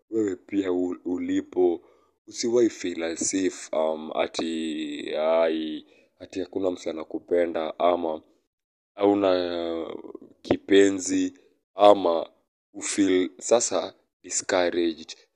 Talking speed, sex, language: 85 wpm, male, English